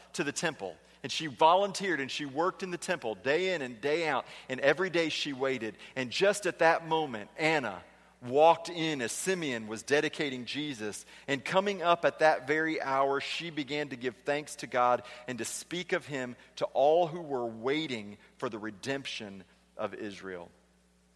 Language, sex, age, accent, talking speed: English, male, 40-59, American, 180 wpm